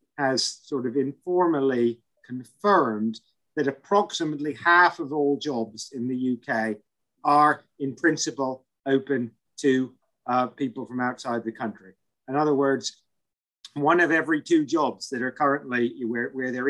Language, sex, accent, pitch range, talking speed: English, male, British, 120-145 Hz, 140 wpm